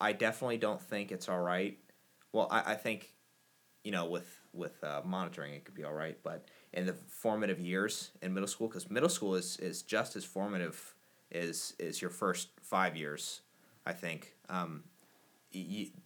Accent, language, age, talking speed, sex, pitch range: American, English, 30-49, 180 wpm, male, 90-105 Hz